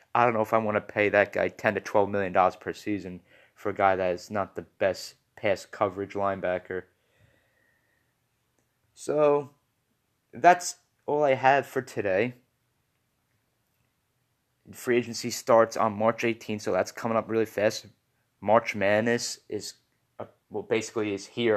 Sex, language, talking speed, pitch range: male, English, 145 wpm, 105-125 Hz